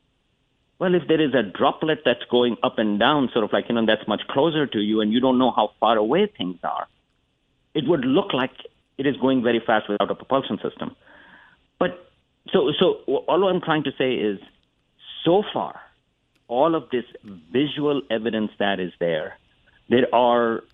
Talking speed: 185 wpm